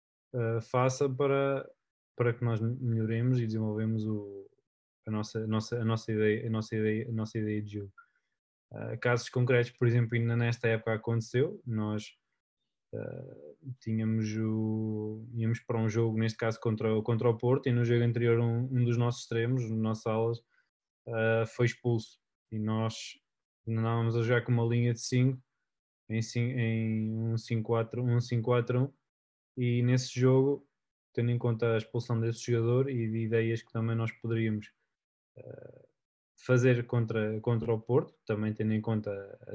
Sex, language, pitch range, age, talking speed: male, Portuguese, 110-120 Hz, 20-39, 170 wpm